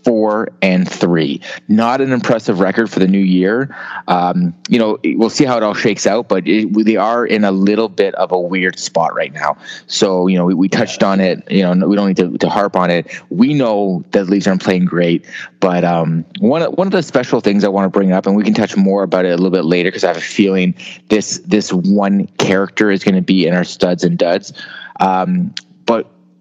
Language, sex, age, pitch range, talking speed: English, male, 30-49, 90-110 Hz, 240 wpm